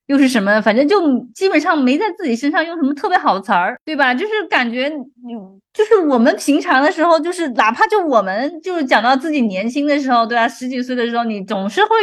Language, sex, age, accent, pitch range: Chinese, female, 20-39, native, 235-325 Hz